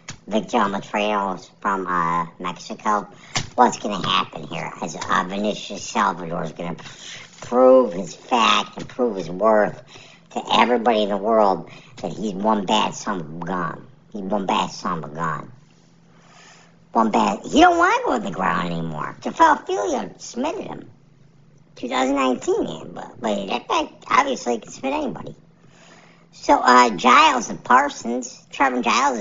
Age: 50-69